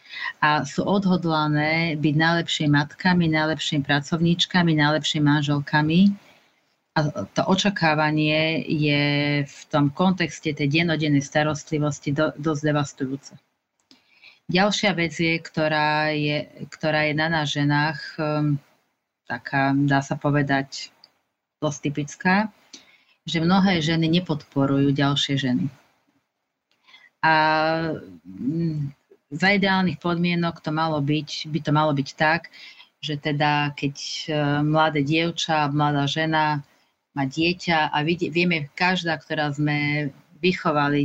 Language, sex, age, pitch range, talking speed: Slovak, female, 30-49, 150-165 Hz, 105 wpm